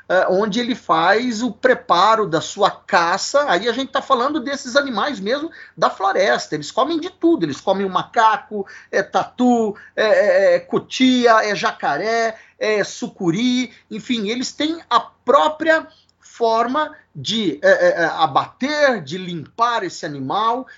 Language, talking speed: Portuguese, 140 wpm